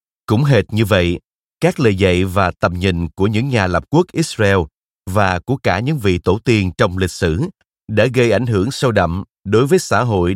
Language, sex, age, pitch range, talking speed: Vietnamese, male, 30-49, 90-115 Hz, 210 wpm